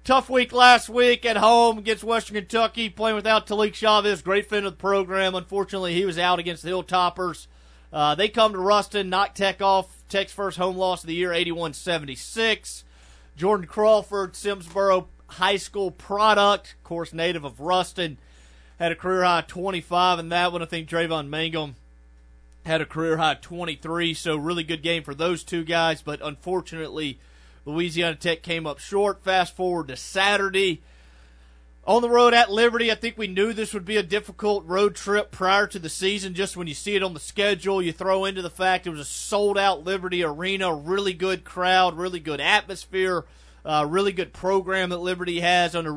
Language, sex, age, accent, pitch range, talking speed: English, male, 30-49, American, 165-200 Hz, 180 wpm